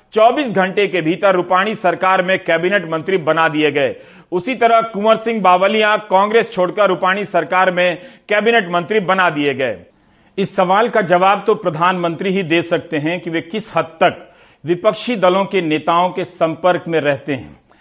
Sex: male